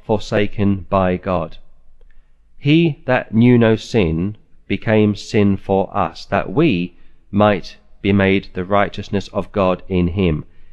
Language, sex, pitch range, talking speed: English, male, 90-110 Hz, 130 wpm